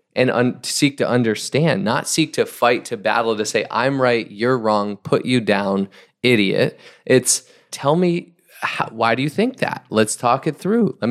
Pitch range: 110-135 Hz